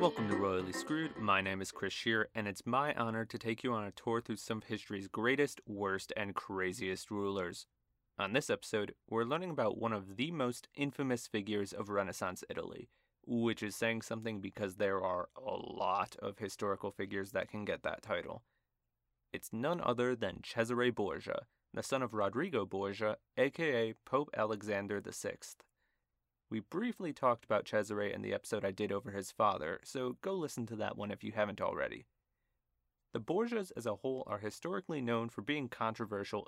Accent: American